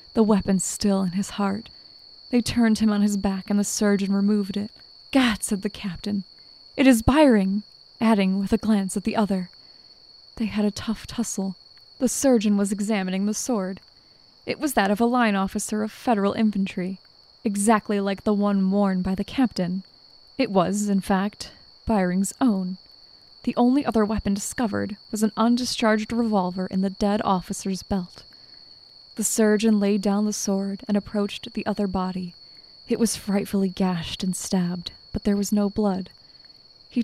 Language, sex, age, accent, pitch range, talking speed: English, female, 20-39, American, 190-220 Hz, 165 wpm